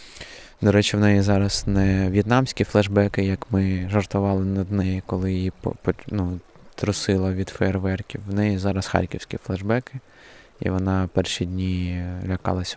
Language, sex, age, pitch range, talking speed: Ukrainian, male, 20-39, 95-110 Hz, 135 wpm